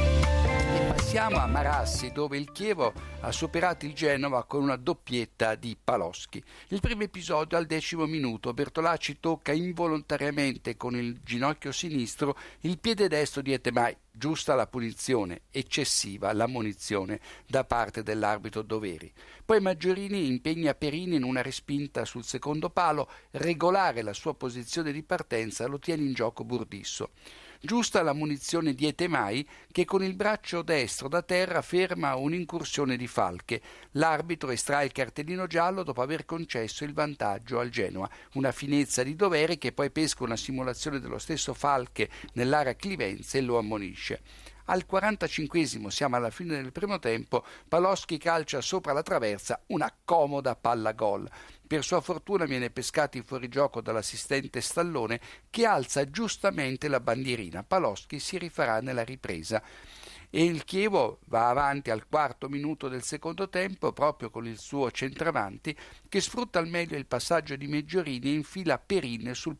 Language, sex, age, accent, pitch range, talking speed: Italian, male, 60-79, native, 120-165 Hz, 145 wpm